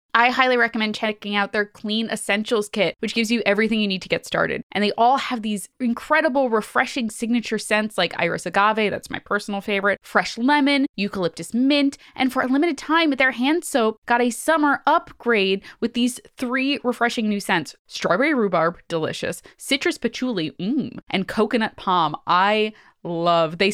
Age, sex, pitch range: 20-39, female, 205-280 Hz